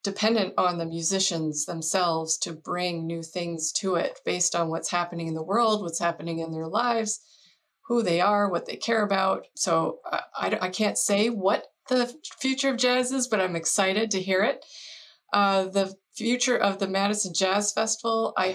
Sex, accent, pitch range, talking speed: female, American, 175-200 Hz, 185 wpm